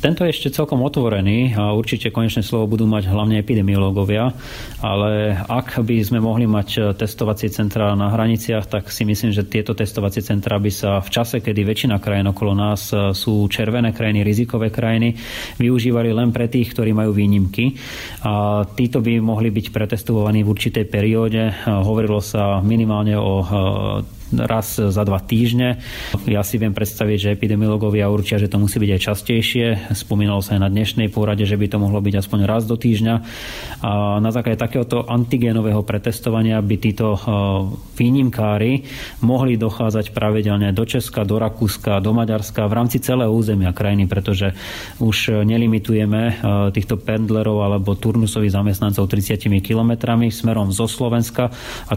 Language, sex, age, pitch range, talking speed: Slovak, male, 30-49, 105-115 Hz, 155 wpm